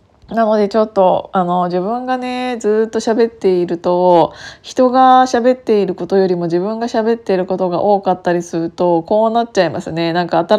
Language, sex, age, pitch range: Japanese, female, 20-39, 180-240 Hz